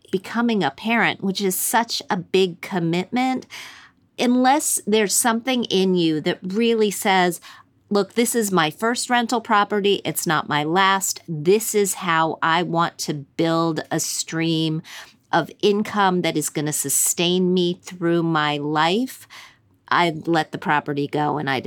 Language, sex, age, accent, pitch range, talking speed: English, female, 40-59, American, 160-205 Hz, 150 wpm